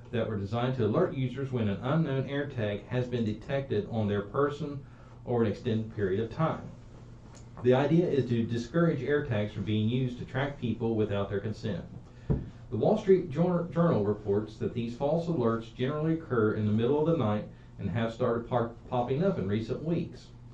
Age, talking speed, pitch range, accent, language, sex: 40-59, 185 wpm, 110-130 Hz, American, English, male